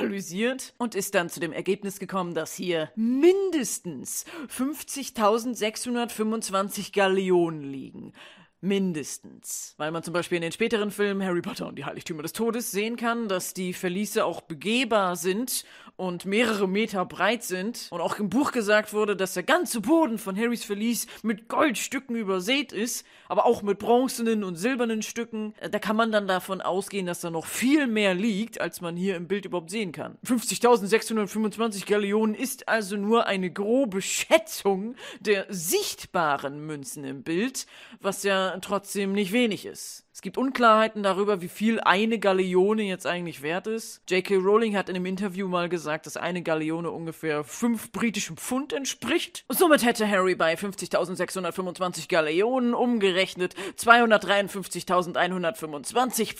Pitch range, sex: 180-230 Hz, female